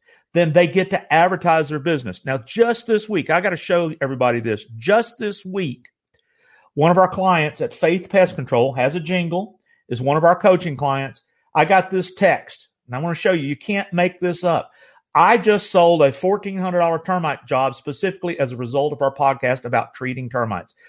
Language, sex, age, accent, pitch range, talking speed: English, male, 50-69, American, 135-190 Hz, 200 wpm